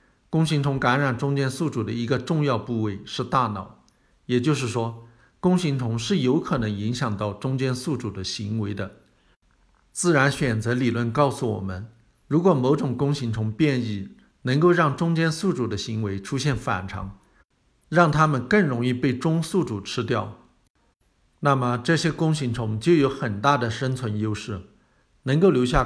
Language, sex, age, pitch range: Chinese, male, 50-69, 110-145 Hz